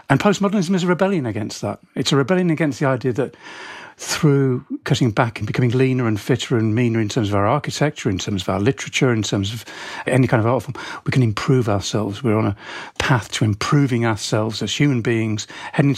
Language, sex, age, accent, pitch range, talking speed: English, male, 50-69, British, 115-145 Hz, 215 wpm